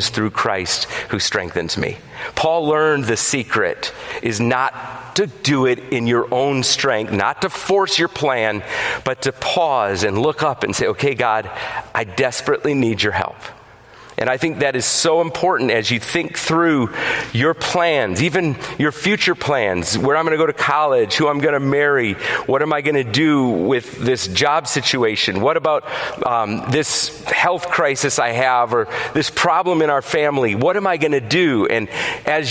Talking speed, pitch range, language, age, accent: 185 wpm, 130-195 Hz, English, 40-59, American